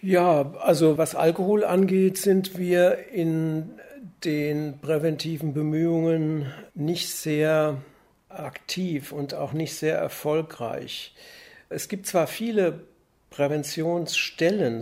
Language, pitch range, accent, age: German, 145-180 Hz, German, 60-79